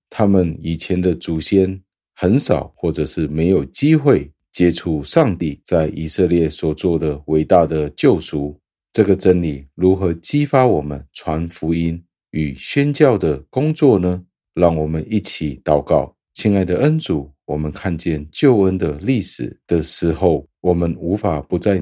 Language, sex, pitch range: Chinese, male, 75-95 Hz